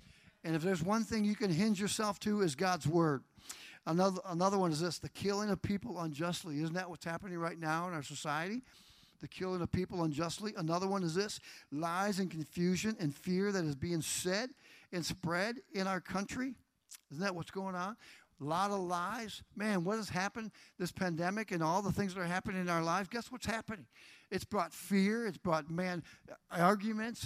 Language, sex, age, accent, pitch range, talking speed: English, male, 50-69, American, 165-205 Hz, 200 wpm